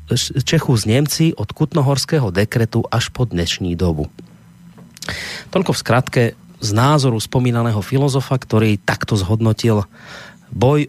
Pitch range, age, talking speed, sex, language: 100-135 Hz, 30-49, 115 wpm, male, Slovak